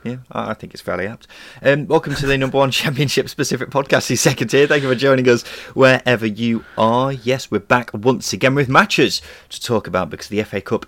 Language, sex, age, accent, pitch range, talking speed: English, male, 30-49, British, 100-135 Hz, 220 wpm